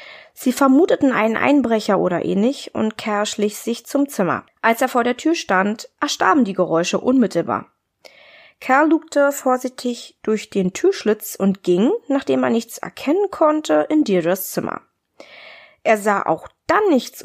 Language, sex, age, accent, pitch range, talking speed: German, female, 20-39, German, 200-280 Hz, 150 wpm